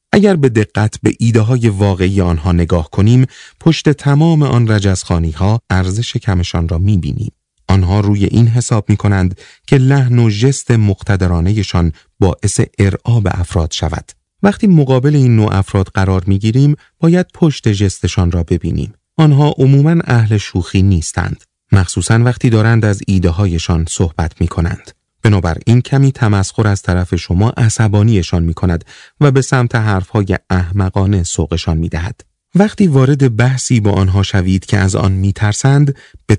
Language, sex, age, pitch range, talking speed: Persian, male, 30-49, 95-125 Hz, 140 wpm